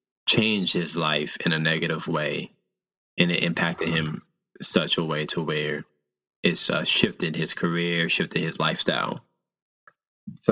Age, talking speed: 20-39, 145 wpm